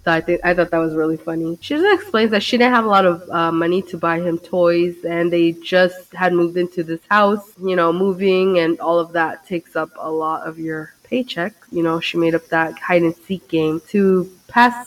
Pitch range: 170-205 Hz